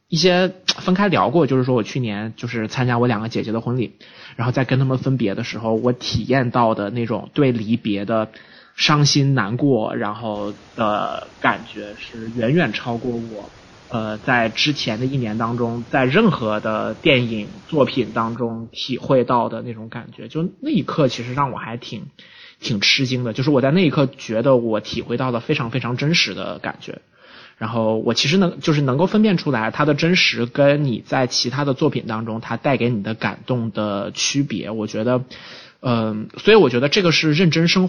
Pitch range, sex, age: 110-140 Hz, male, 20-39